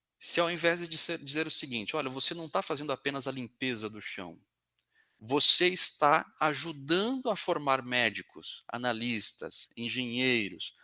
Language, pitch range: Portuguese, 125-170 Hz